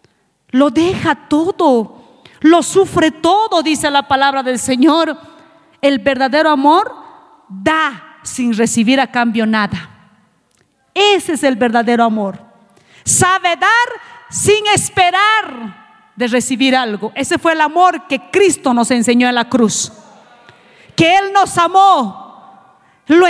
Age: 40-59